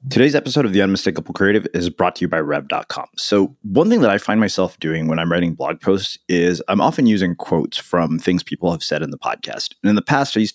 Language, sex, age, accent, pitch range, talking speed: English, male, 30-49, American, 85-105 Hz, 250 wpm